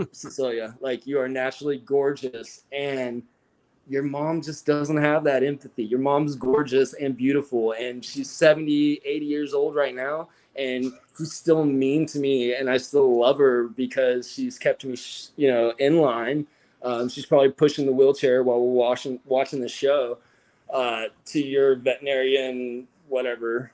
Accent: American